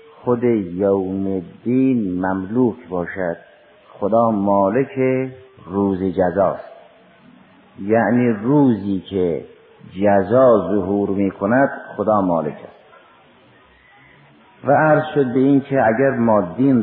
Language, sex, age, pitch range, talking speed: Persian, male, 50-69, 100-130 Hz, 100 wpm